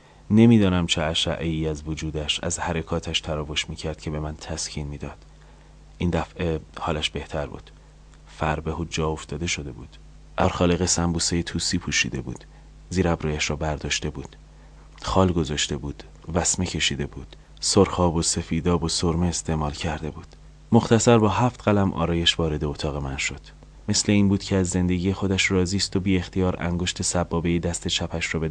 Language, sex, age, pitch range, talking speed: Persian, male, 30-49, 80-90 Hz, 165 wpm